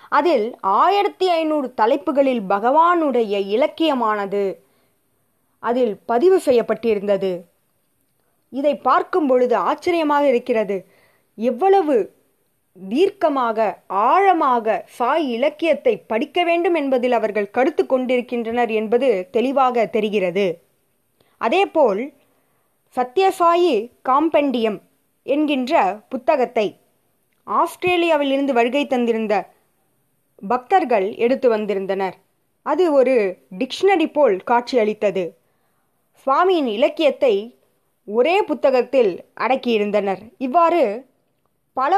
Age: 20-39